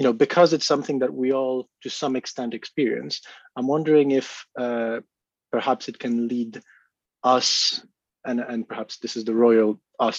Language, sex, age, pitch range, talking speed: English, male, 20-39, 110-125 Hz, 170 wpm